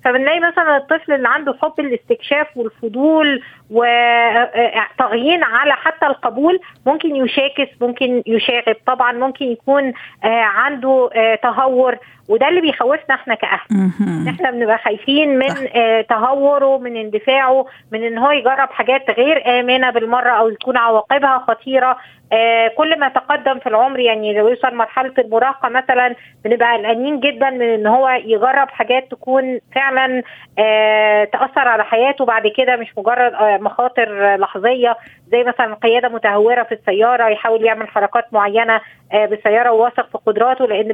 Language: Arabic